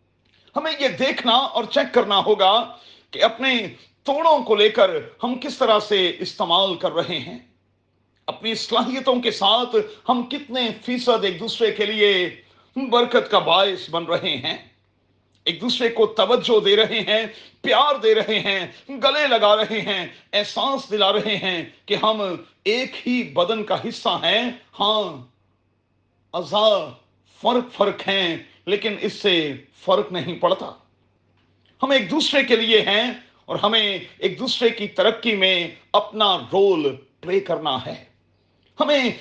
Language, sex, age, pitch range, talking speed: Urdu, male, 40-59, 170-230 Hz, 145 wpm